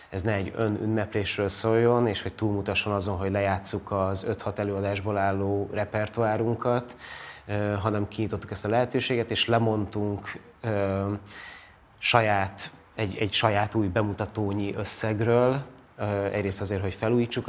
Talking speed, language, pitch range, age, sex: 120 wpm, Hungarian, 100-110 Hz, 30-49, male